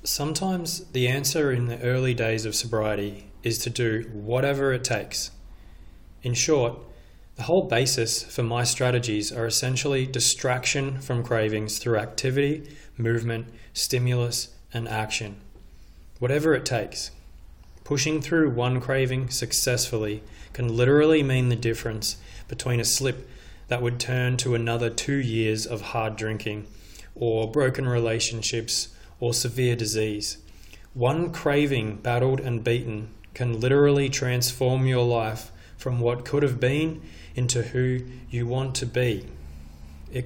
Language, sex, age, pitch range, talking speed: English, male, 20-39, 105-130 Hz, 130 wpm